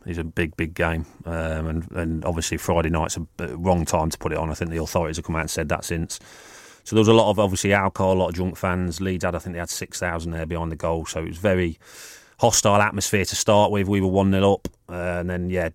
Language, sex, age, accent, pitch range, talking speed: English, male, 30-49, British, 85-105 Hz, 265 wpm